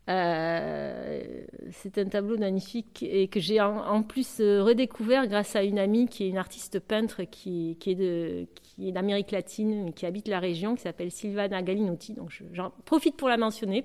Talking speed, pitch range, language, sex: 195 wpm, 180-225 Hz, French, female